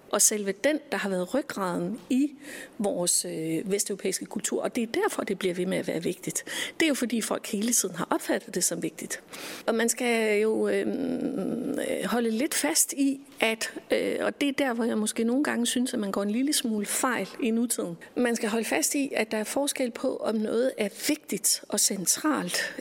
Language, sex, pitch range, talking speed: Danish, female, 200-260 Hz, 205 wpm